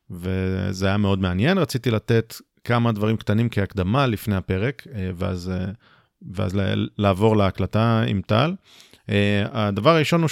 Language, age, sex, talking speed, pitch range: Hebrew, 40-59, male, 120 wpm, 100-120 Hz